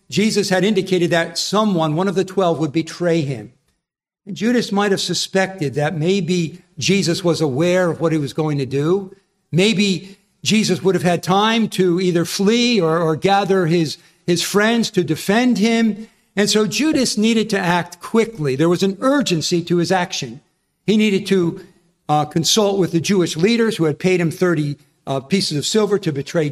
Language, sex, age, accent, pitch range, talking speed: English, male, 50-69, American, 165-195 Hz, 180 wpm